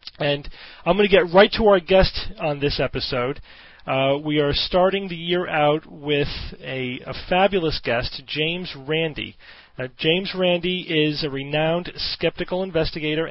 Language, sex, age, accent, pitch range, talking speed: English, male, 30-49, American, 130-170 Hz, 150 wpm